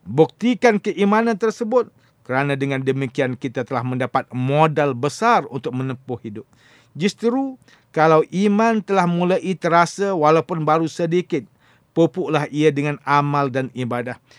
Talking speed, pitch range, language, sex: 120 wpm, 130-185 Hz, English, male